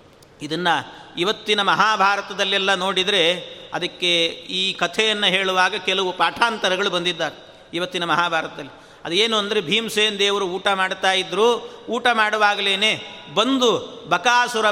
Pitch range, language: 185-225 Hz, Kannada